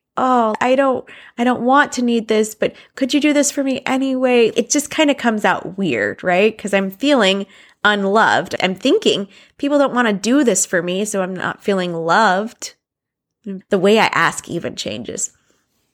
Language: English